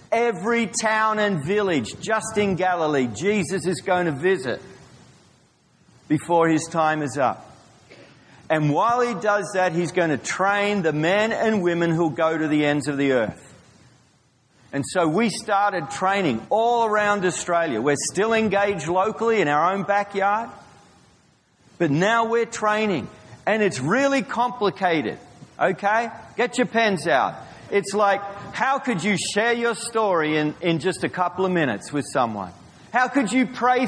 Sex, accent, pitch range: male, Australian, 165-220 Hz